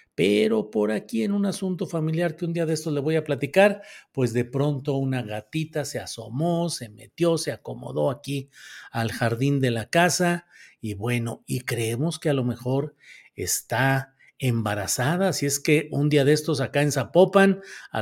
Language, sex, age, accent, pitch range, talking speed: Spanish, male, 50-69, Mexican, 125-165 Hz, 185 wpm